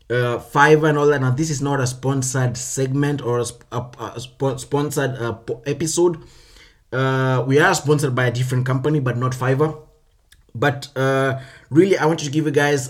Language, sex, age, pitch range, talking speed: English, male, 20-39, 125-150 Hz, 170 wpm